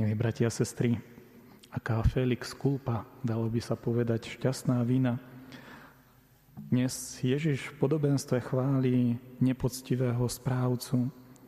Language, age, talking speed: Slovak, 40-59, 105 wpm